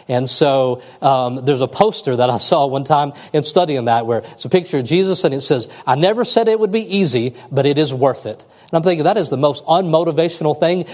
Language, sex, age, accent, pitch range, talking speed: English, male, 40-59, American, 125-185 Hz, 240 wpm